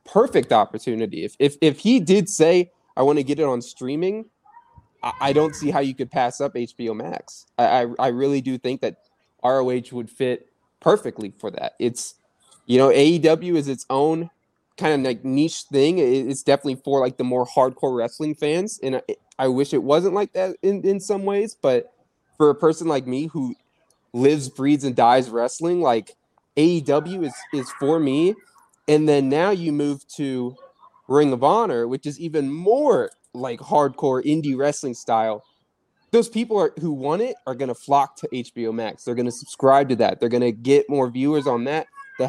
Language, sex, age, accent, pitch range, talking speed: English, male, 20-39, American, 125-160 Hz, 195 wpm